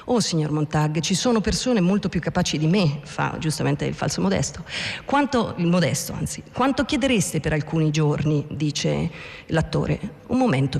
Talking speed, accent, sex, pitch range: 160 wpm, native, female, 155-195 Hz